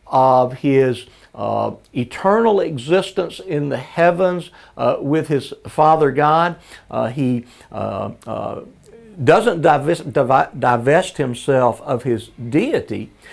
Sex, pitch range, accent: male, 125-170 Hz, American